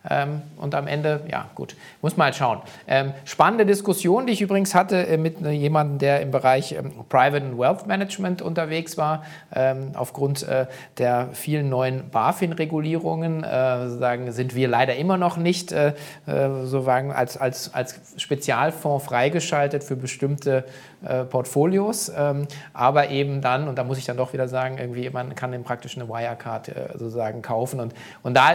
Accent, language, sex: German, German, male